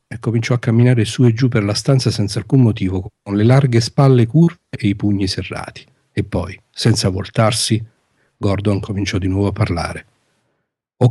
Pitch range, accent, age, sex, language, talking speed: 105-130 Hz, native, 40-59, male, Italian, 180 wpm